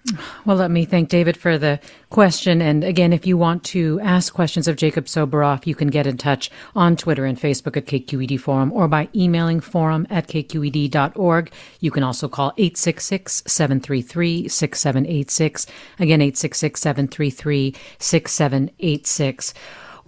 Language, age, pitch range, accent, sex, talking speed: English, 40-59, 150-185 Hz, American, female, 130 wpm